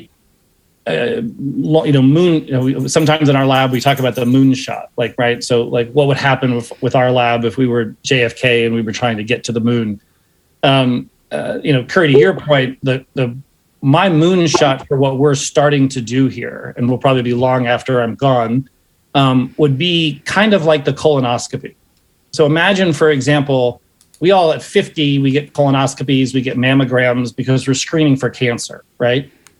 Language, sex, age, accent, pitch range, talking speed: English, male, 40-59, American, 125-150 Hz, 195 wpm